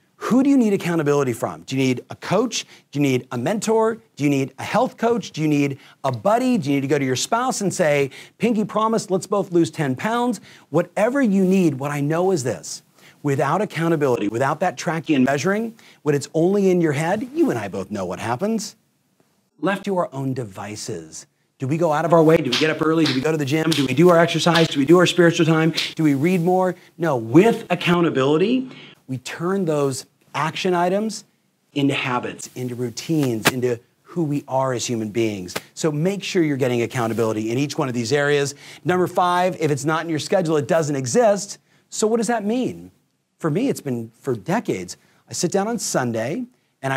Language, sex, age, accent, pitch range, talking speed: English, male, 40-59, American, 135-185 Hz, 215 wpm